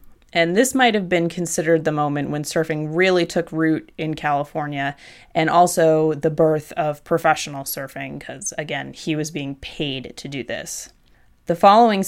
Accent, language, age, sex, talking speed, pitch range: American, English, 20-39, female, 165 wpm, 155-225 Hz